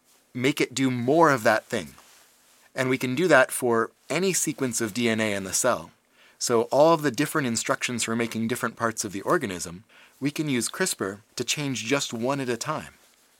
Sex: male